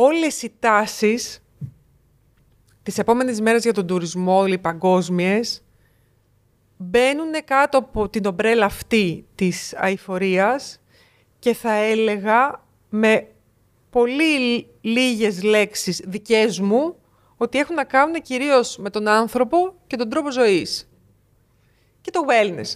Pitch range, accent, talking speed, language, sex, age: 190-255 Hz, native, 115 wpm, Greek, female, 30-49